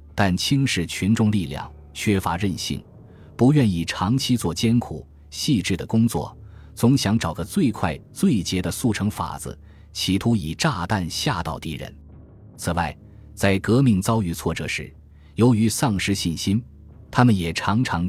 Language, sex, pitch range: Chinese, male, 85-110 Hz